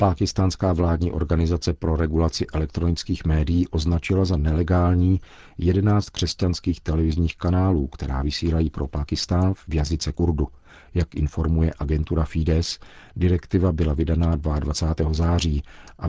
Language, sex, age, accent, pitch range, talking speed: Czech, male, 50-69, native, 75-90 Hz, 115 wpm